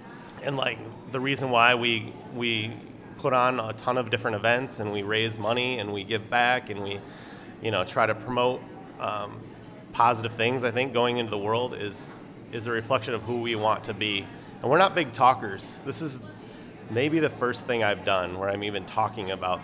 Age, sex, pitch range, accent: 30-49, male, 110-135 Hz, American